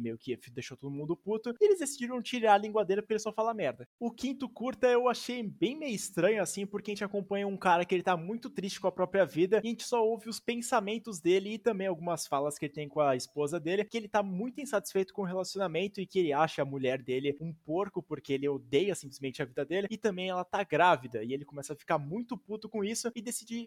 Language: Portuguese